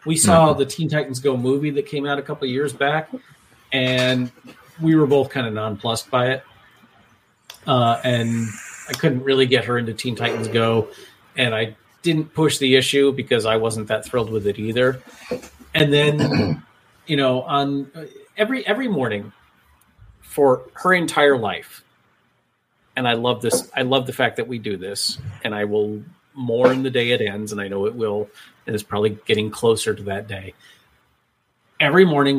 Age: 40-59